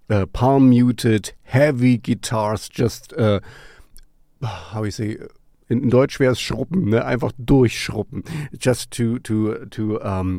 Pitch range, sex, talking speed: 110-135 Hz, male, 140 wpm